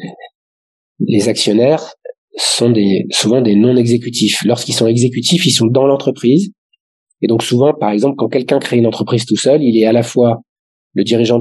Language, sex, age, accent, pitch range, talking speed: French, male, 40-59, French, 105-130 Hz, 170 wpm